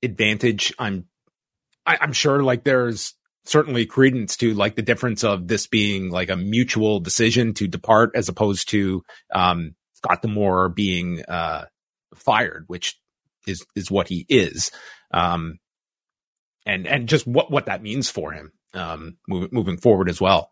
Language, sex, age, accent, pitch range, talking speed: English, male, 30-49, American, 100-145 Hz, 160 wpm